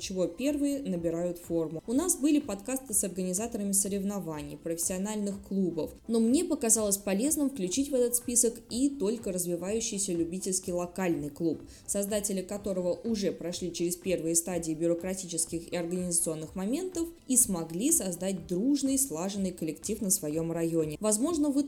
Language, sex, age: Russian, female, 20-39